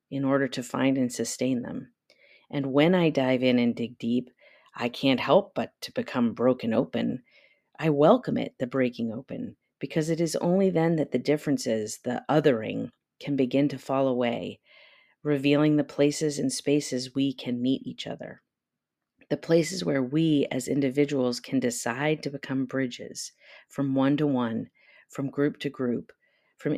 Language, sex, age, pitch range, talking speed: English, female, 40-59, 125-150 Hz, 165 wpm